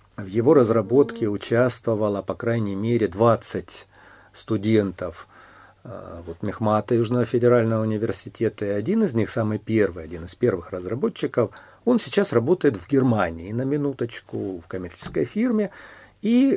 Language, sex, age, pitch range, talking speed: Russian, male, 50-69, 95-125 Hz, 125 wpm